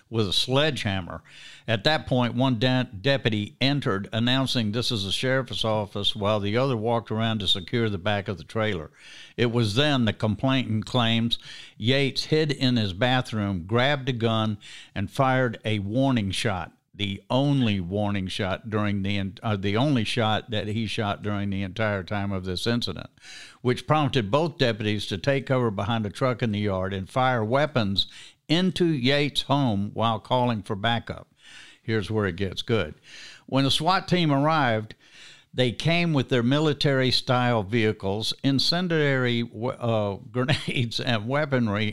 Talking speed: 160 wpm